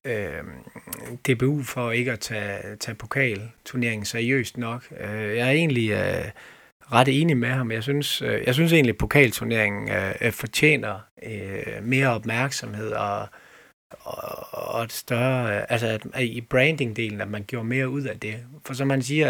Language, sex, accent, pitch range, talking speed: Danish, male, native, 110-130 Hz, 165 wpm